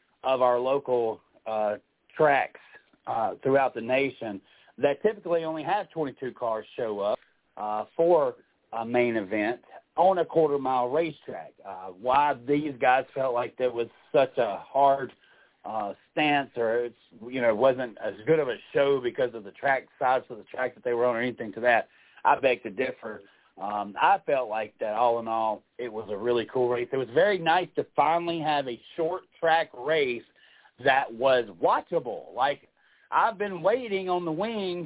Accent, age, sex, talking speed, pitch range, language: American, 40-59, male, 180 wpm, 125-195 Hz, English